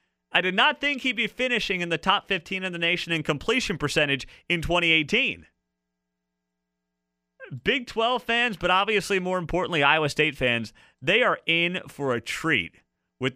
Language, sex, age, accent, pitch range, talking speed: English, male, 30-49, American, 125-185 Hz, 160 wpm